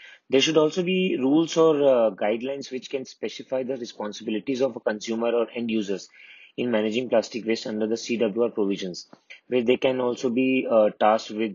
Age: 30-49